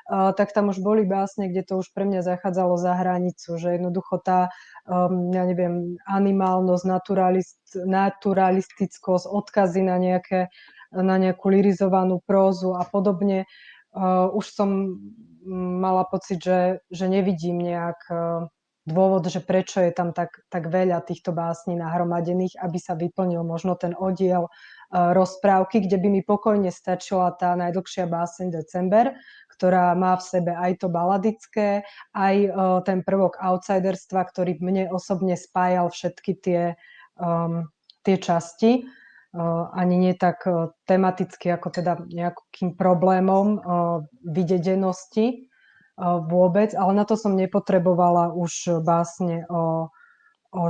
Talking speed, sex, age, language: 135 wpm, female, 20-39, Slovak